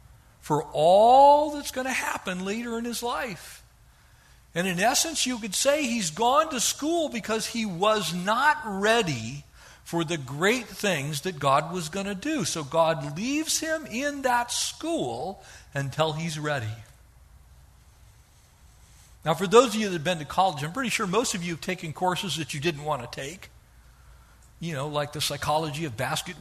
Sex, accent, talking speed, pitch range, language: male, American, 175 wpm, 165-270 Hz, English